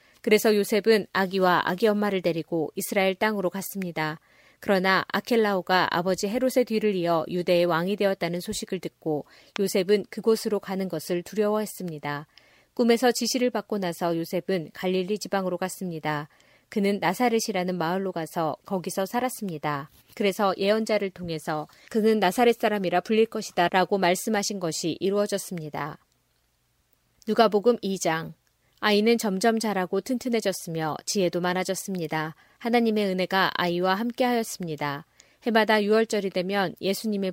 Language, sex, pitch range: Korean, female, 175-215 Hz